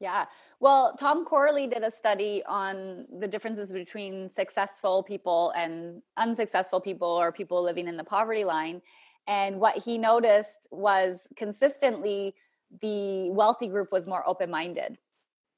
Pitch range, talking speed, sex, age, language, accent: 195-235 Hz, 135 wpm, female, 20-39, English, American